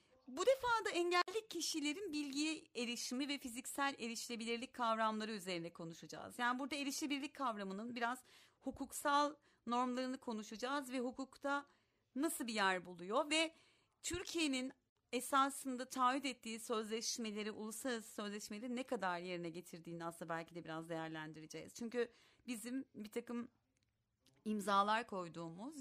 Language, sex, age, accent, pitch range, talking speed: Turkish, female, 40-59, native, 210-290 Hz, 115 wpm